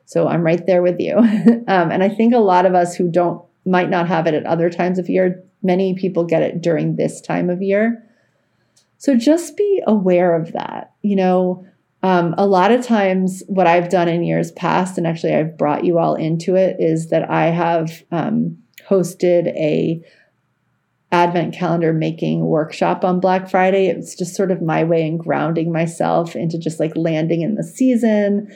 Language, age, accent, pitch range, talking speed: English, 30-49, American, 165-195 Hz, 190 wpm